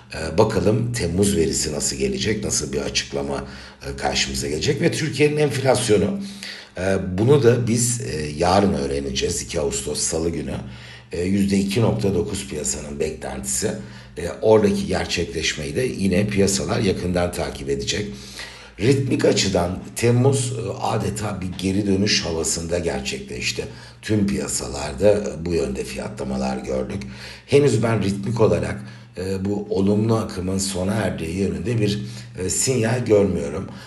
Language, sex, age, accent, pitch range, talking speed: Turkish, male, 60-79, native, 85-110 Hz, 110 wpm